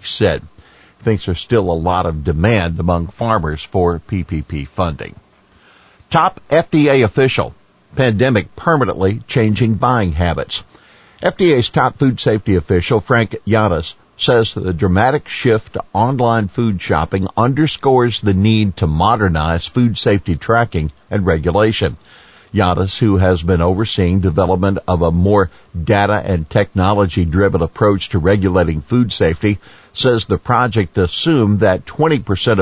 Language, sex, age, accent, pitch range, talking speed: English, male, 50-69, American, 90-110 Hz, 130 wpm